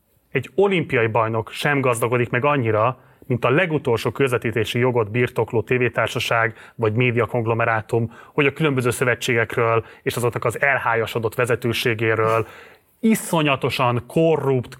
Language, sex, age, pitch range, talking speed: Hungarian, male, 30-49, 120-145 Hz, 110 wpm